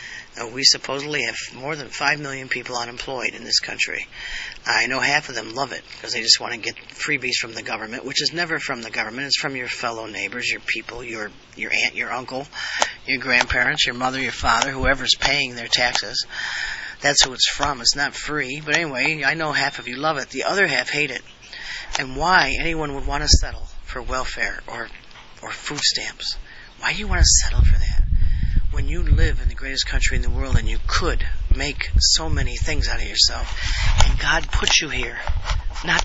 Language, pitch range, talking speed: English, 90-150 Hz, 210 wpm